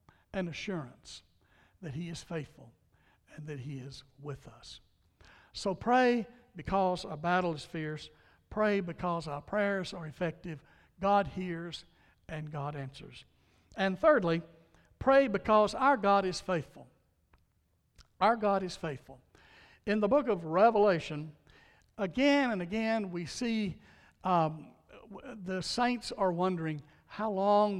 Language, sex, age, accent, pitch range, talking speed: English, male, 60-79, American, 145-200 Hz, 125 wpm